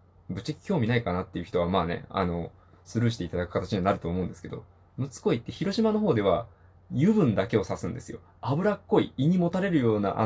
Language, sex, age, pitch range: Japanese, male, 20-39, 90-150 Hz